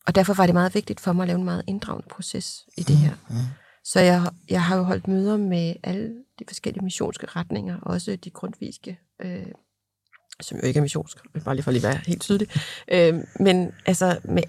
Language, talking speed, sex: Danish, 210 wpm, female